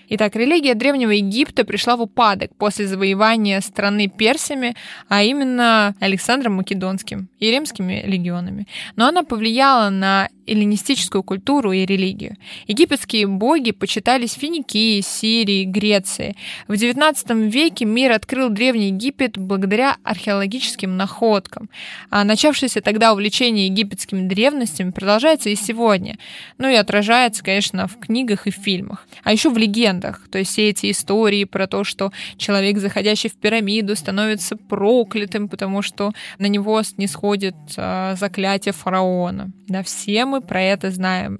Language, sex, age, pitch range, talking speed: Russian, female, 20-39, 195-230 Hz, 135 wpm